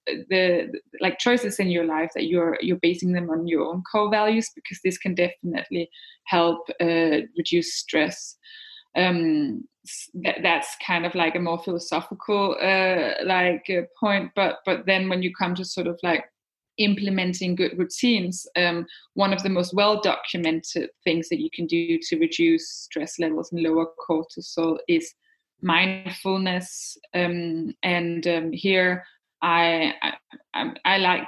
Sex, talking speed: female, 145 wpm